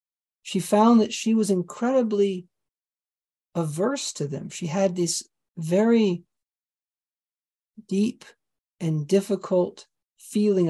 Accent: American